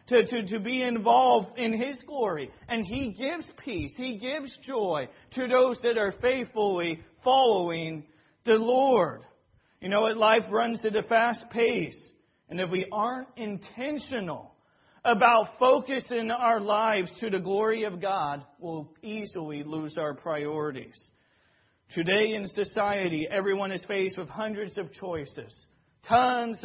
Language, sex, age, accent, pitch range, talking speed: English, male, 40-59, American, 175-225 Hz, 135 wpm